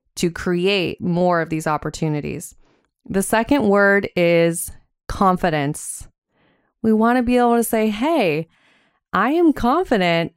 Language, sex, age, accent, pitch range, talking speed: English, female, 20-39, American, 170-220 Hz, 125 wpm